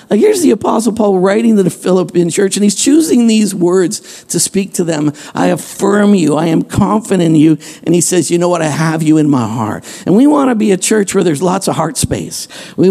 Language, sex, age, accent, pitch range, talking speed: English, male, 50-69, American, 150-190 Hz, 245 wpm